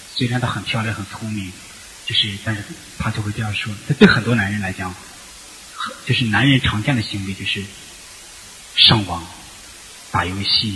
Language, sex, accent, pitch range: Chinese, male, native, 95-120 Hz